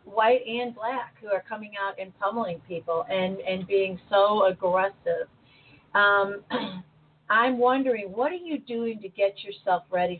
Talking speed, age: 155 wpm, 40-59